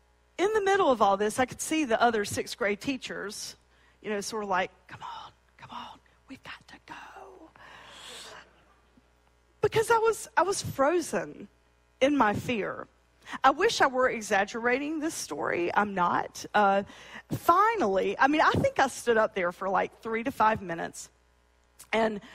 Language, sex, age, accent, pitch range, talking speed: English, female, 40-59, American, 190-280 Hz, 165 wpm